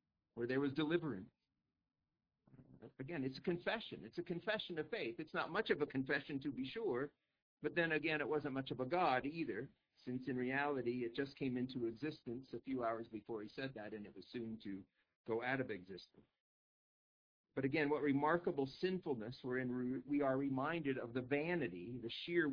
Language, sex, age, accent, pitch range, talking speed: English, male, 50-69, American, 125-165 Hz, 185 wpm